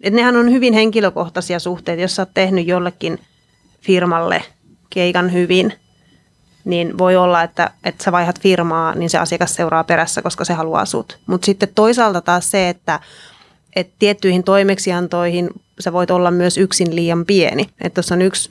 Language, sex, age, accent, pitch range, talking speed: Finnish, female, 30-49, native, 180-200 Hz, 160 wpm